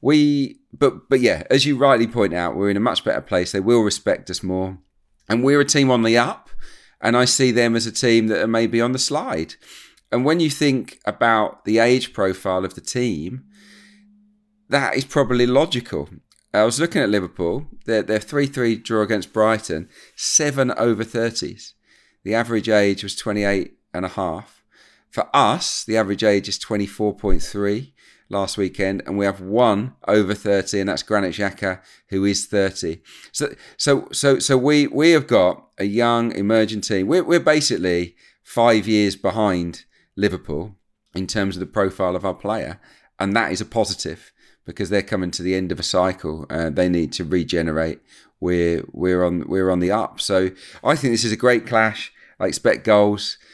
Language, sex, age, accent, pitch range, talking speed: English, male, 40-59, British, 95-120 Hz, 185 wpm